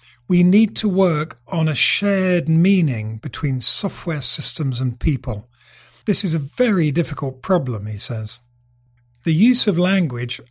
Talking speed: 145 wpm